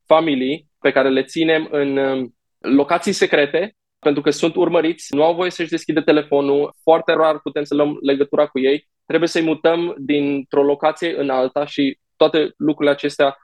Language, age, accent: Romanian, 20-39, native